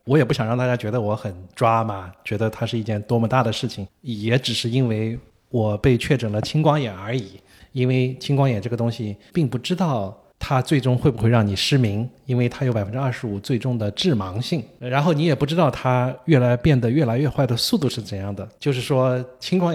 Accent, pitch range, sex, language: native, 110-135 Hz, male, Chinese